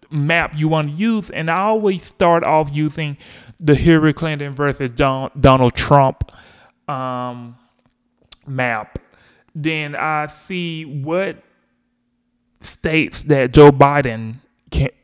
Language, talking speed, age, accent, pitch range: English, 110 wpm, 30-49, American, 135-170 Hz